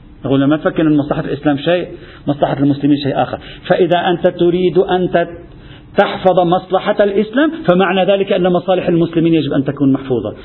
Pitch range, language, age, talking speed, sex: 145-200 Hz, Arabic, 50-69, 160 wpm, male